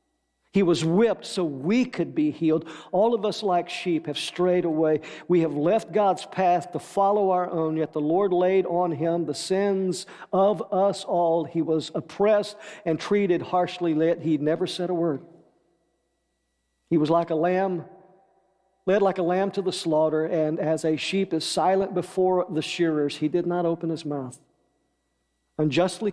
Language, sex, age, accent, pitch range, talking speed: English, male, 50-69, American, 150-185 Hz, 175 wpm